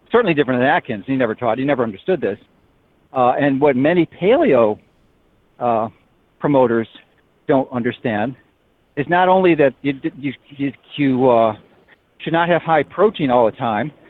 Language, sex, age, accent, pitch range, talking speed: English, male, 50-69, American, 125-160 Hz, 155 wpm